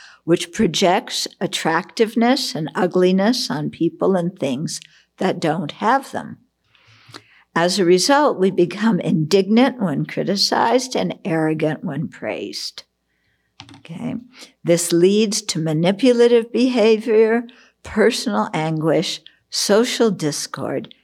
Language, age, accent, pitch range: English, 60-79, American, 160-225 Hz